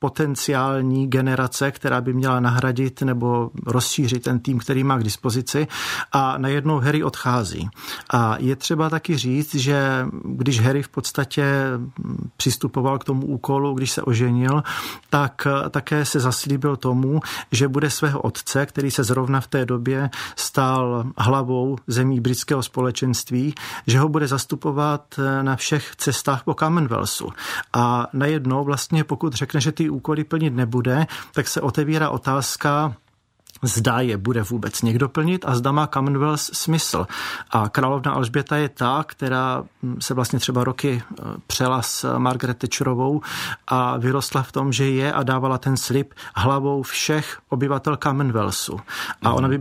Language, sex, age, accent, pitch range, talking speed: Czech, male, 40-59, native, 125-145 Hz, 145 wpm